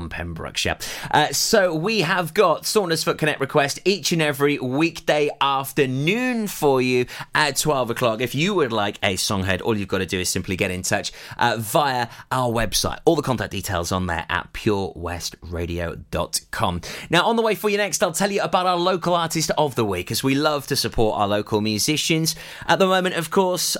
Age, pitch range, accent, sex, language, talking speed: 30-49, 110-155 Hz, British, male, English, 195 wpm